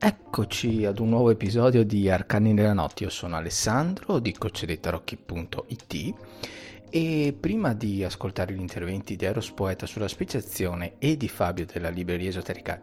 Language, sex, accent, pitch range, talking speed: Italian, male, native, 95-125 Hz, 145 wpm